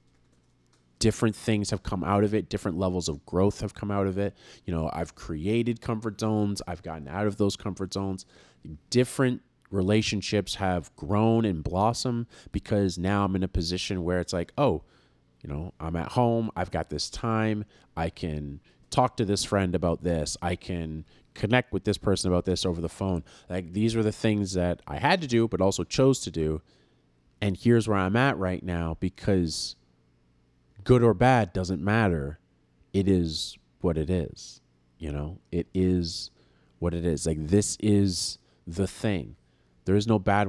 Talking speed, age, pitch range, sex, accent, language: 180 wpm, 30-49, 80-105 Hz, male, American, English